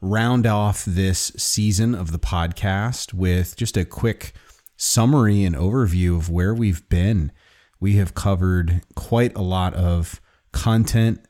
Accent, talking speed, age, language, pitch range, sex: American, 140 wpm, 30-49, English, 85-100 Hz, male